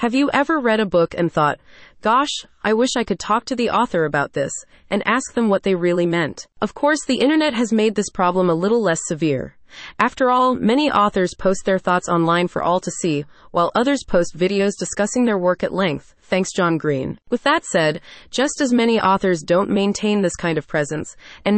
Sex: female